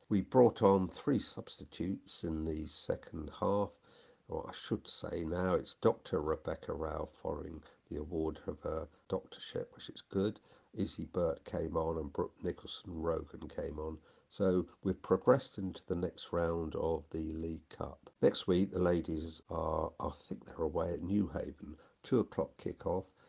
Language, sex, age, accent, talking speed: English, male, 50-69, British, 160 wpm